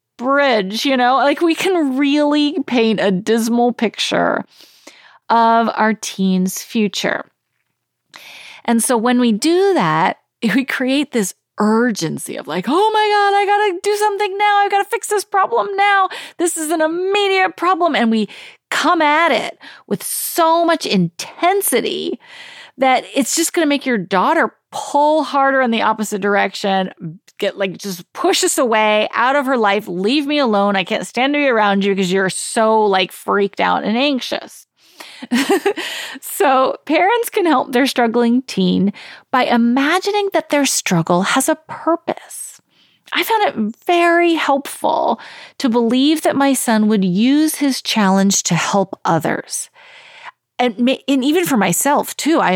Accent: American